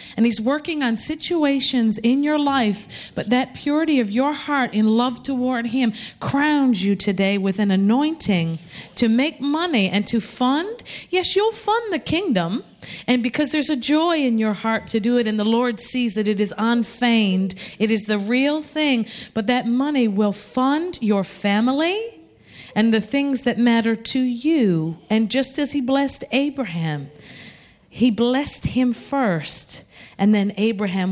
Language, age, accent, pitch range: English, 40-59, American, 215-280 Hz